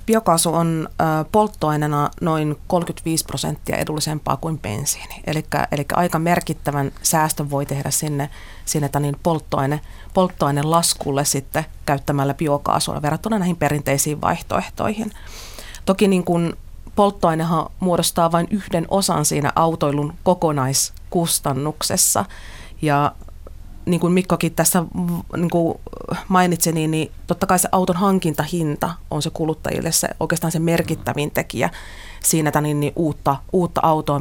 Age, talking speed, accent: 30-49, 110 wpm, native